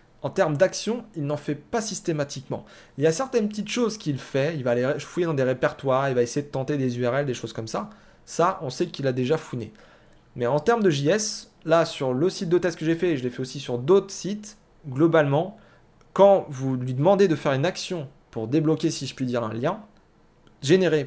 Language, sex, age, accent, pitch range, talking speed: French, male, 30-49, French, 130-180 Hz, 230 wpm